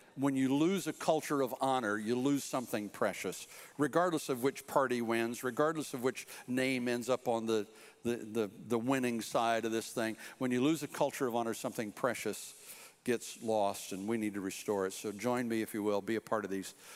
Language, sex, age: English, male, 60-79